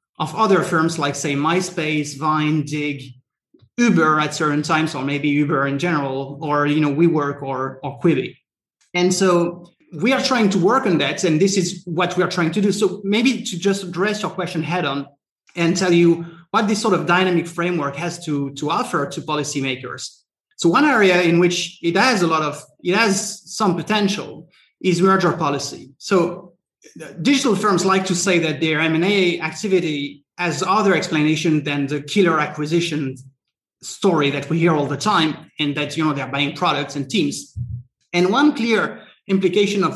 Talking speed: 180 wpm